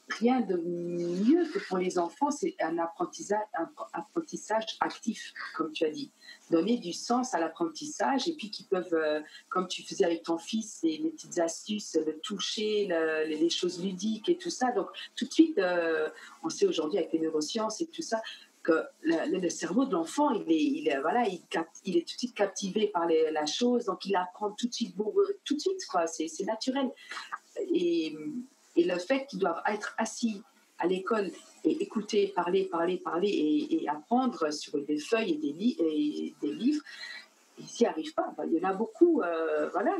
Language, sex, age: French, female, 40-59